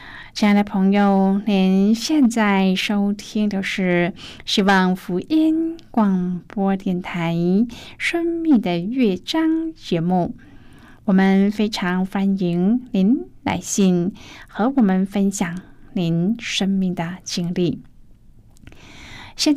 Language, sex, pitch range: Chinese, female, 180-240 Hz